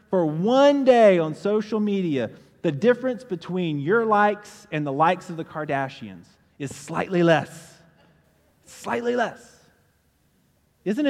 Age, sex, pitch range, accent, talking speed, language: 30-49, male, 155-195 Hz, American, 125 wpm, English